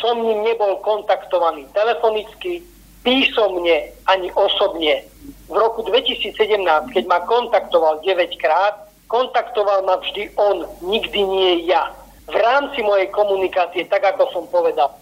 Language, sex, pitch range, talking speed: Slovak, male, 180-225 Hz, 125 wpm